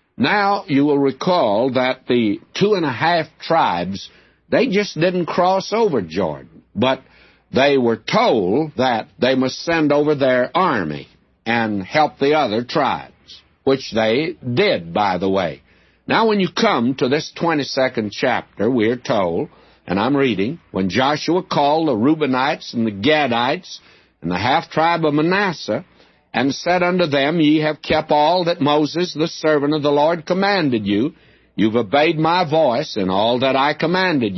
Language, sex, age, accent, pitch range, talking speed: English, male, 60-79, American, 120-165 Hz, 160 wpm